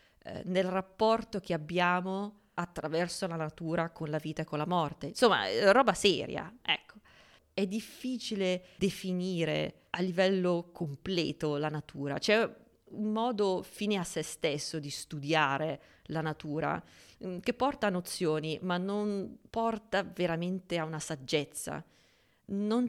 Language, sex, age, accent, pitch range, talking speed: Italian, female, 20-39, native, 155-205 Hz, 130 wpm